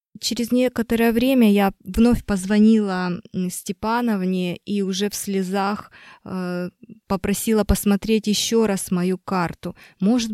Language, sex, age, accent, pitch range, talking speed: Russian, female, 20-39, native, 185-220 Hz, 105 wpm